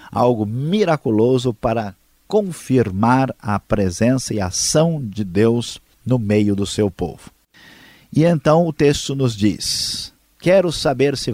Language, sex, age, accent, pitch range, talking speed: Portuguese, male, 50-69, Brazilian, 105-140 Hz, 125 wpm